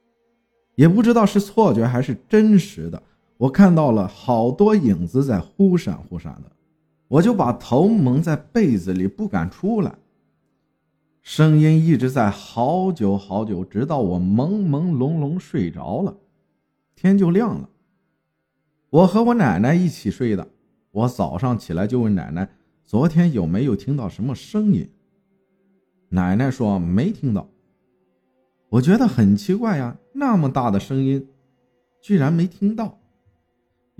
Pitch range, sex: 125-200 Hz, male